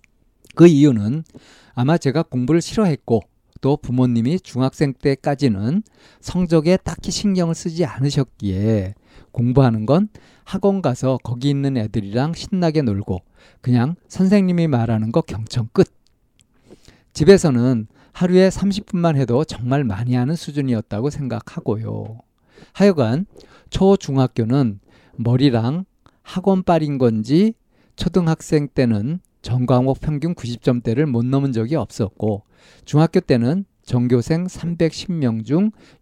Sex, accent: male, native